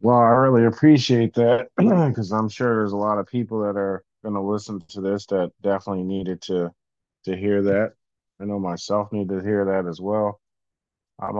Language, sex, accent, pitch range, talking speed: English, male, American, 95-120 Hz, 195 wpm